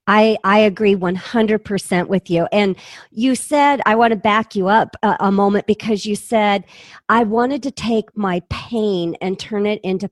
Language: English